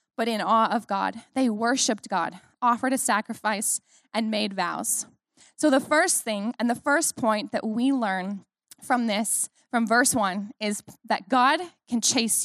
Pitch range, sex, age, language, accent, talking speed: 220-280 Hz, female, 10-29, English, American, 170 wpm